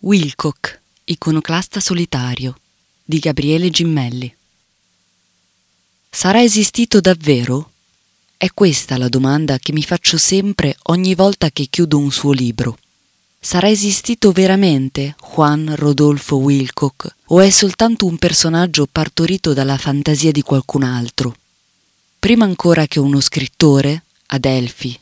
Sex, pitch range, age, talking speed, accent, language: female, 135-175 Hz, 20-39, 115 wpm, native, Italian